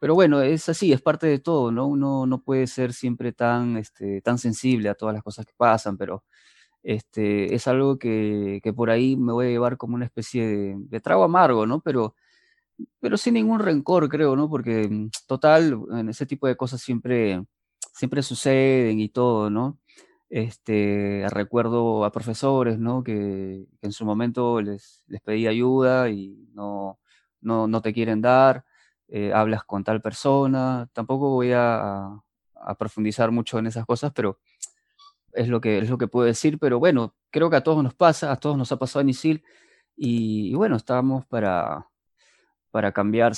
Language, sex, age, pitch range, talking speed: Spanish, male, 20-39, 105-130 Hz, 180 wpm